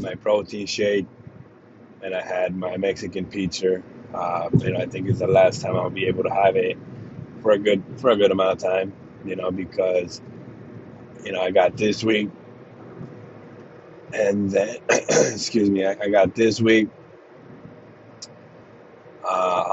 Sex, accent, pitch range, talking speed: male, American, 90-110 Hz, 155 wpm